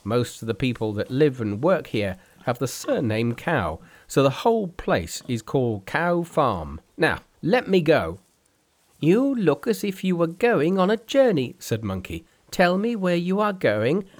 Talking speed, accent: 180 wpm, British